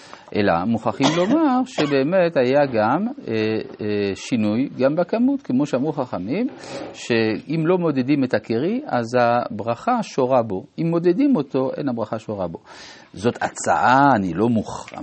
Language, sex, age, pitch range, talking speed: Hebrew, male, 50-69, 110-160 Hz, 140 wpm